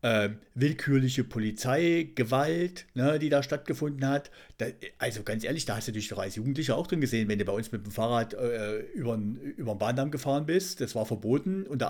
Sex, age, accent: male, 50-69, German